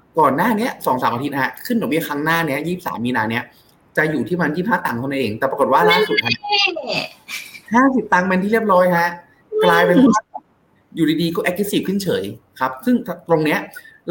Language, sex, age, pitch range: Thai, male, 20-39, 125-175 Hz